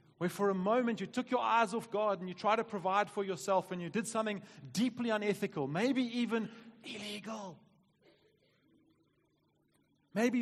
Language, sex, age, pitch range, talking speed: English, male, 30-49, 145-195 Hz, 155 wpm